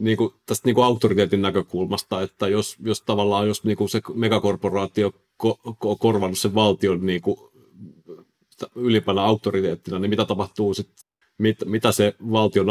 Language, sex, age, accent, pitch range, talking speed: Finnish, male, 30-49, native, 100-115 Hz, 155 wpm